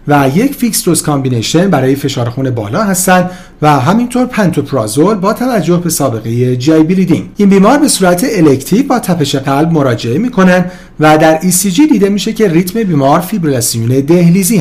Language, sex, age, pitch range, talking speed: Persian, male, 40-59, 140-205 Hz, 165 wpm